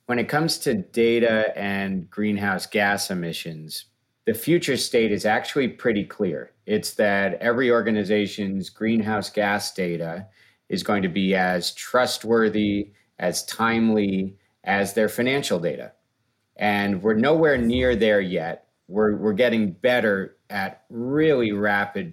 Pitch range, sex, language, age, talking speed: 95-115 Hz, male, English, 40-59, 130 wpm